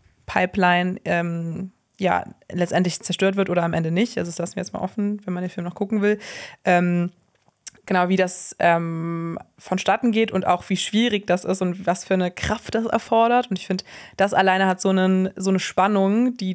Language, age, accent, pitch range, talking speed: German, 20-39, German, 180-200 Hz, 195 wpm